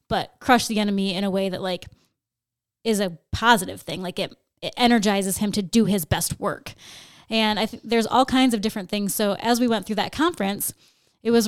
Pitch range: 190-225 Hz